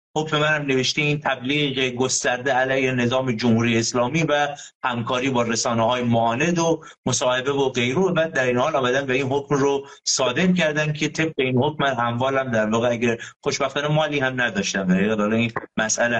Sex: male